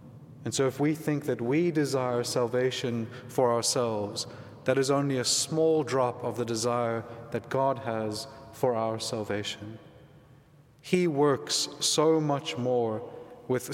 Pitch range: 115-140 Hz